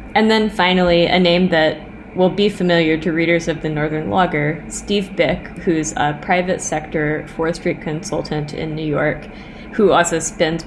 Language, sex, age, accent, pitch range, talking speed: English, female, 20-39, American, 155-195 Hz, 165 wpm